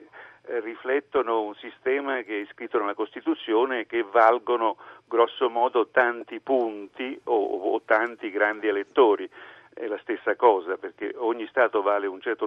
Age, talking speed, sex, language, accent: 50-69, 140 wpm, male, Italian, native